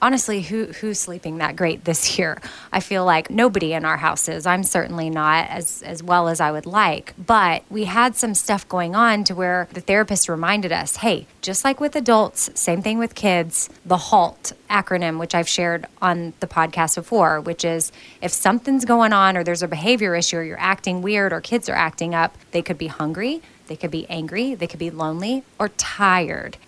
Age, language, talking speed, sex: 20-39, English, 205 wpm, female